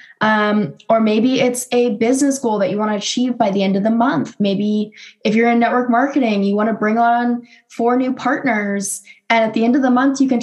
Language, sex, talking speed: English, female, 235 wpm